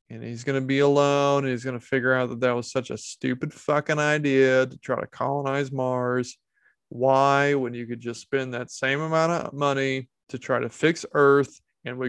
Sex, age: male, 20-39